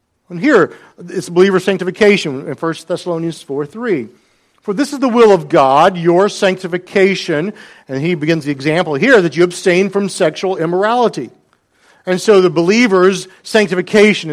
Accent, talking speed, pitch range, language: American, 150 wpm, 155-200 Hz, English